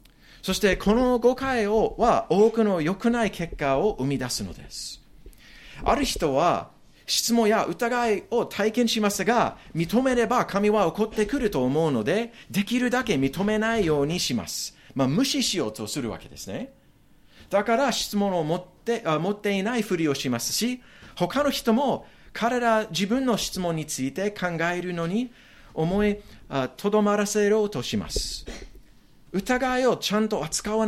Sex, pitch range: male, 160-225 Hz